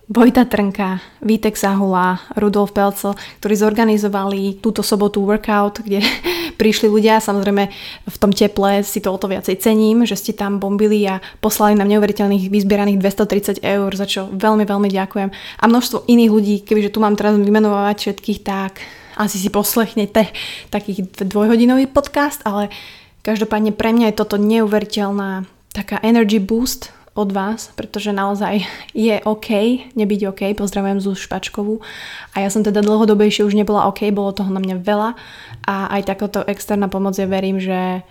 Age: 20-39